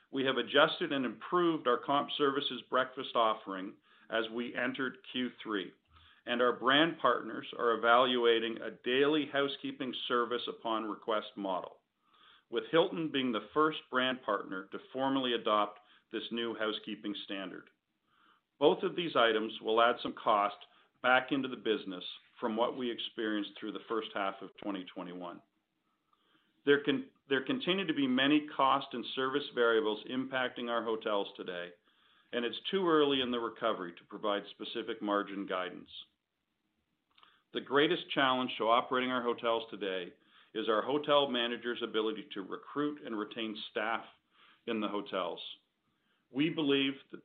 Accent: American